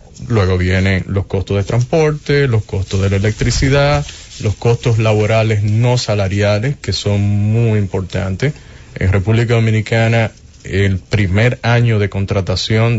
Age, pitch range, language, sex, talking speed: 20-39, 100-130 Hz, English, male, 130 wpm